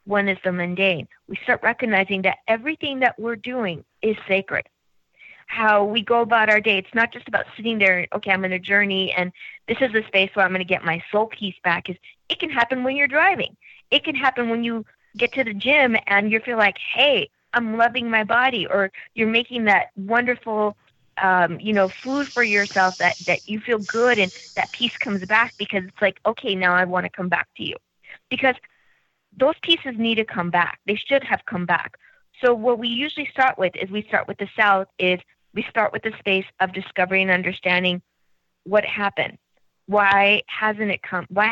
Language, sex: English, female